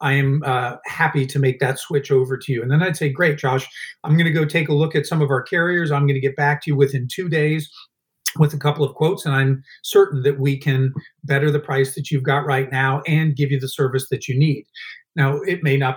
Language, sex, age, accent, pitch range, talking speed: English, male, 40-59, American, 135-160 Hz, 255 wpm